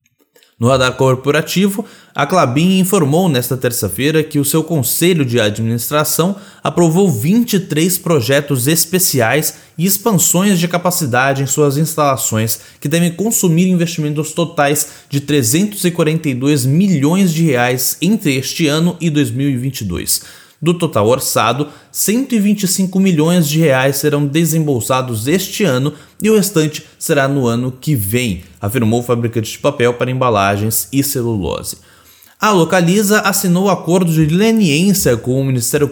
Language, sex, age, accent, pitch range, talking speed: Portuguese, male, 20-39, Brazilian, 130-175 Hz, 130 wpm